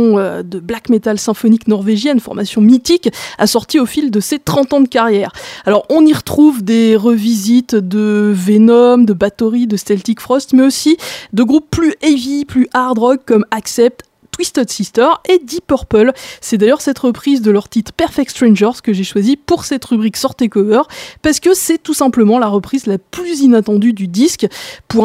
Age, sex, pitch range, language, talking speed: 20-39, female, 210-275 Hz, French, 175 wpm